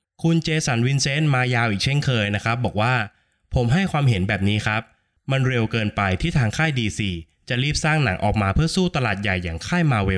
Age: 20-39